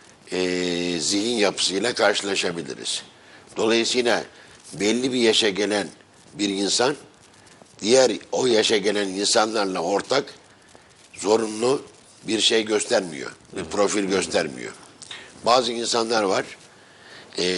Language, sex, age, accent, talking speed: Turkish, male, 60-79, native, 95 wpm